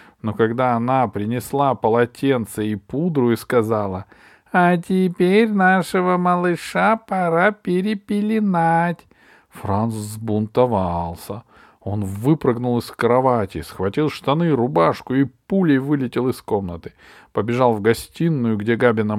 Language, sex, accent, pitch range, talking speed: Russian, male, native, 100-145 Hz, 105 wpm